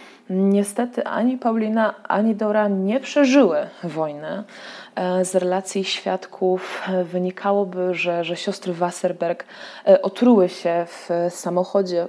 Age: 20-39